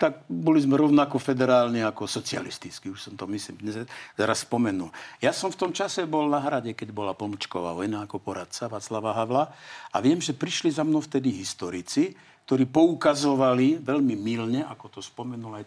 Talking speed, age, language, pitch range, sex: 170 wpm, 60-79, Slovak, 120-165 Hz, male